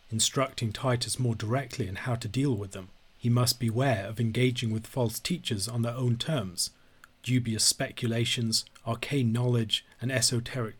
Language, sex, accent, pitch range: English, male, British, 110-130 Hz